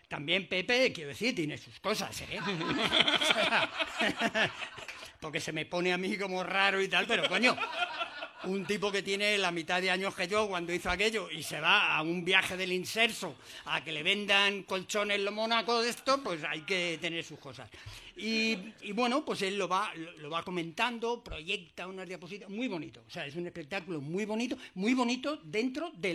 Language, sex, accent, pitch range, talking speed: Spanish, male, Spanish, 170-230 Hz, 190 wpm